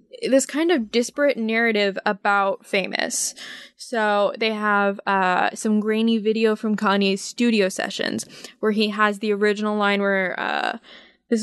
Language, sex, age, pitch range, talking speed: English, female, 20-39, 195-230 Hz, 140 wpm